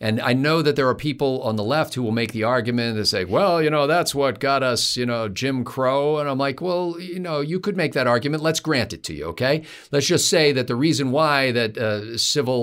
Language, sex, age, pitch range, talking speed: English, male, 50-69, 95-135 Hz, 260 wpm